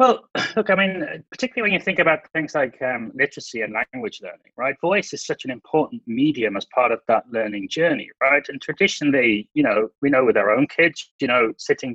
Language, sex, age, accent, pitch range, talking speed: English, male, 30-49, British, 120-160 Hz, 215 wpm